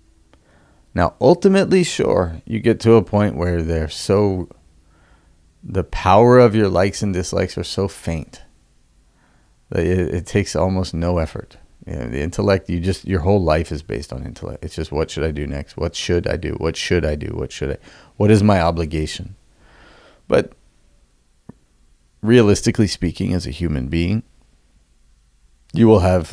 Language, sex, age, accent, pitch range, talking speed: English, male, 30-49, American, 80-105 Hz, 160 wpm